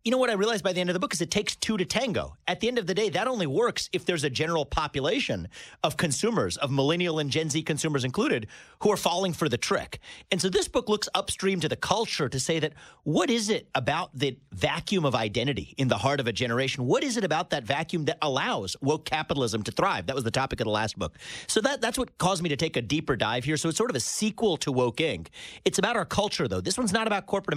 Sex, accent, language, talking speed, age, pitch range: male, American, English, 270 wpm, 40-59, 130-190 Hz